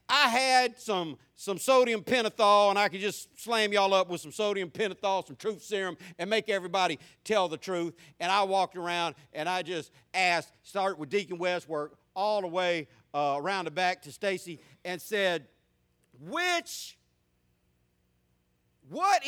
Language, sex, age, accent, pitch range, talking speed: English, male, 50-69, American, 145-210 Hz, 160 wpm